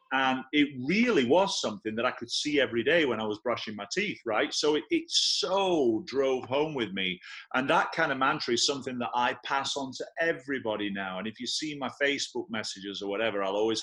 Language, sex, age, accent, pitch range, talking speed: English, male, 30-49, British, 110-165 Hz, 220 wpm